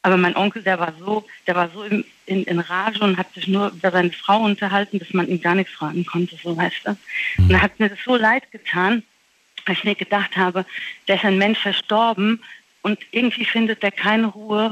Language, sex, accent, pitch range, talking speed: German, female, German, 185-215 Hz, 215 wpm